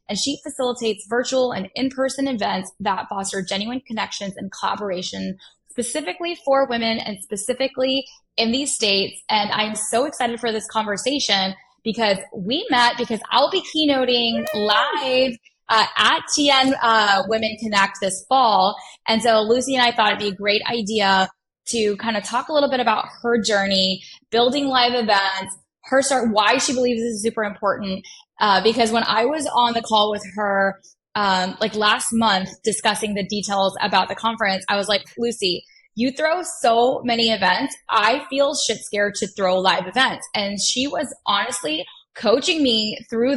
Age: 10-29